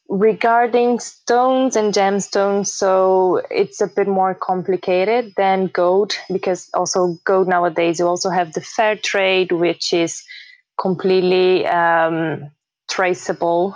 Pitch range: 170-195 Hz